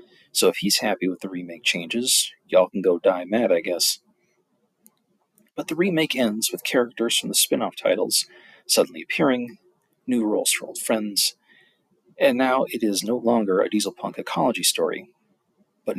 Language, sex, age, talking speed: English, male, 40-59, 160 wpm